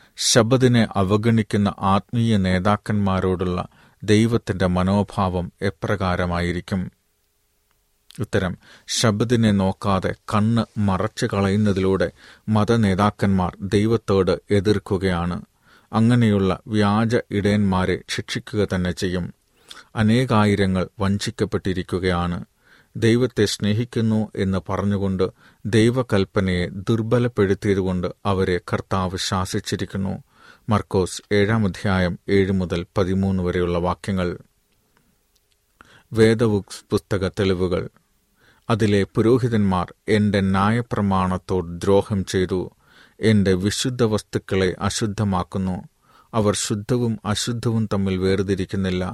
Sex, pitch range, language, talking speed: male, 95-110 Hz, Malayalam, 70 wpm